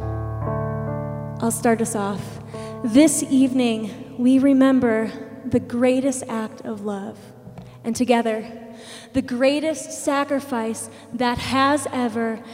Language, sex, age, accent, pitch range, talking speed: English, female, 20-39, American, 220-265 Hz, 100 wpm